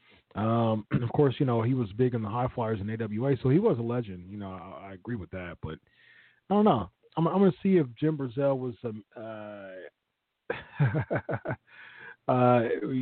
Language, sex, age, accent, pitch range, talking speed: English, male, 40-59, American, 95-130 Hz, 185 wpm